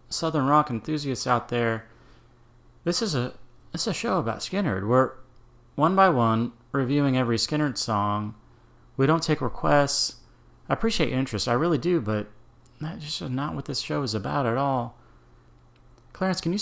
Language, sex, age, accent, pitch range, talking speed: English, male, 30-49, American, 115-145 Hz, 165 wpm